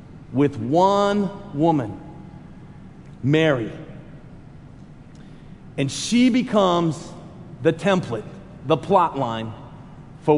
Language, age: English, 40-59